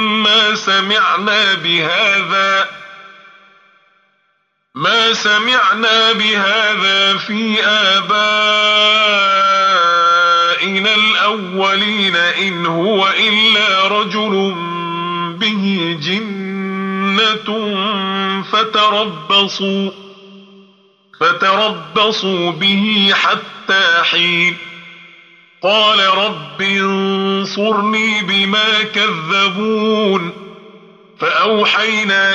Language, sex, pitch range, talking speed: Arabic, male, 190-215 Hz, 45 wpm